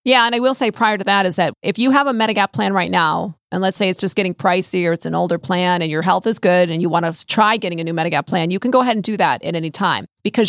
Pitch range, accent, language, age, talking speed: 175-225 Hz, American, English, 40-59, 320 wpm